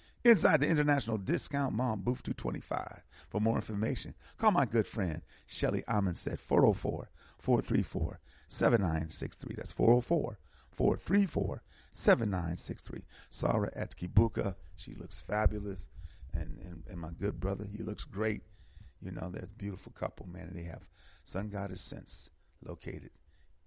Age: 40-59